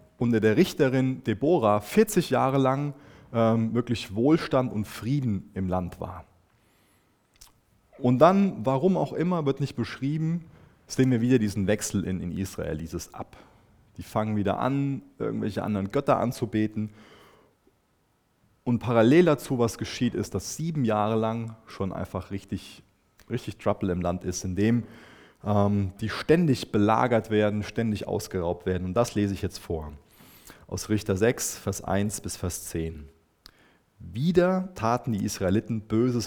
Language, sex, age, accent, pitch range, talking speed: German, male, 30-49, German, 95-120 Hz, 145 wpm